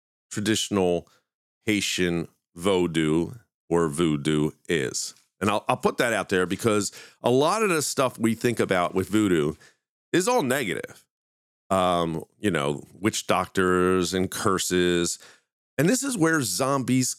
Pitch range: 90-125 Hz